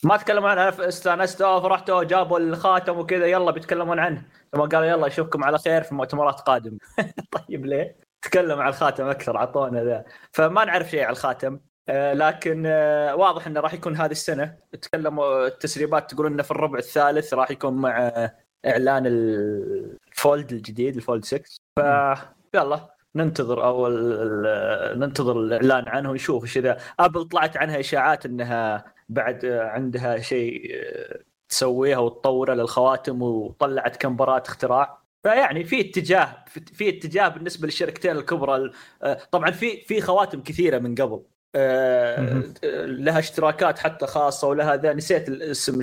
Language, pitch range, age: Arabic, 130-170 Hz, 20-39